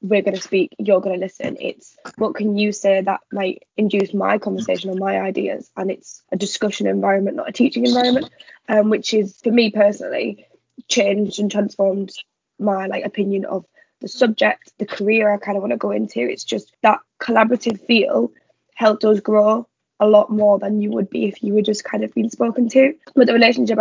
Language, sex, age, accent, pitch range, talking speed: English, female, 10-29, British, 200-225 Hz, 205 wpm